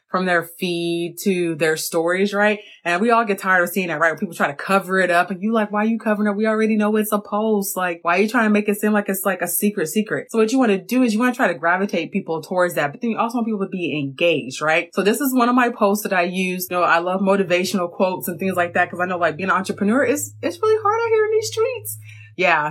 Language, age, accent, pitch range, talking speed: English, 20-39, American, 175-225 Hz, 300 wpm